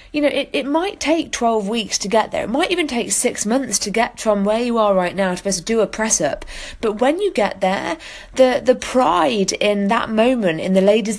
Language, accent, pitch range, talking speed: English, British, 200-285 Hz, 230 wpm